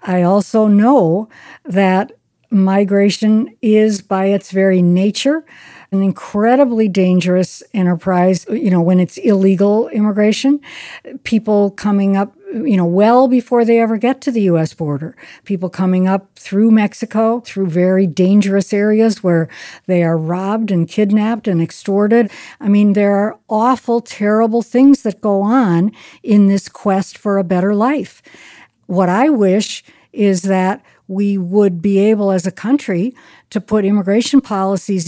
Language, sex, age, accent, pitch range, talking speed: English, female, 60-79, American, 190-230 Hz, 145 wpm